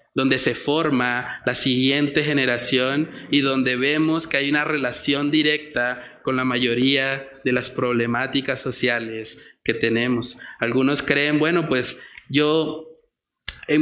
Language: Spanish